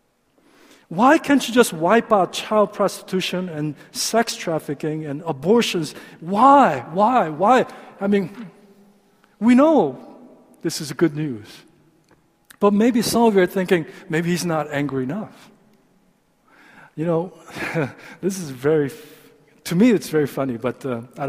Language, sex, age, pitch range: Korean, male, 50-69, 150-215 Hz